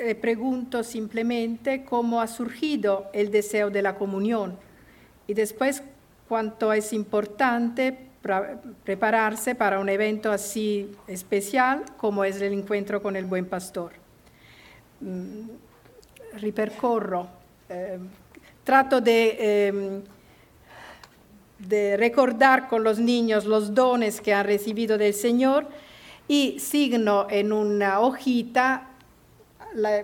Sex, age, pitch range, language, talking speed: female, 50-69, 205-245 Hz, English, 100 wpm